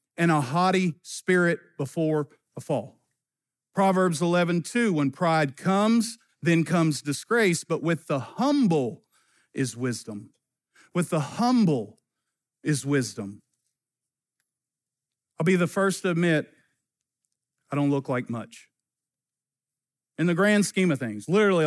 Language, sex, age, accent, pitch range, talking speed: English, male, 50-69, American, 140-195 Hz, 120 wpm